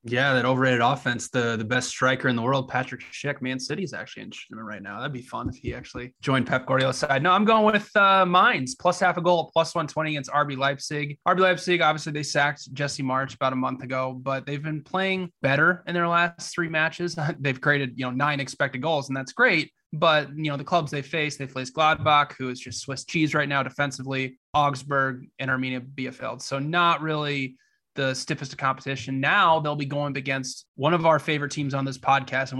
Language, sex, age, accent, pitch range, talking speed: English, male, 20-39, American, 130-155 Hz, 220 wpm